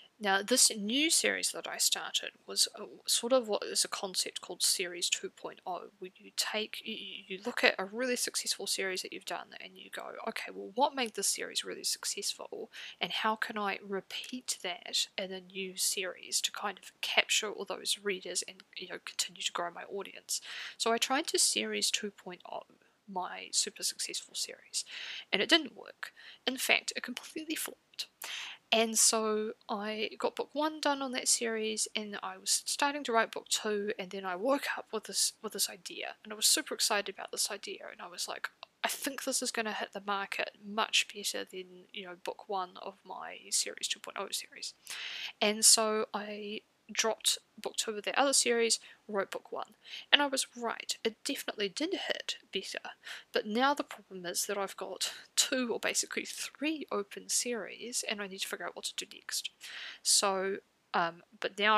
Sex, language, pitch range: female, English, 195-255 Hz